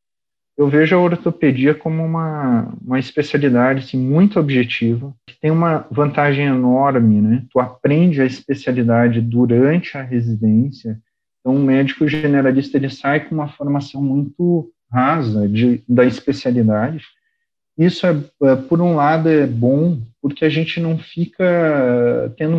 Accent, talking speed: Brazilian, 140 wpm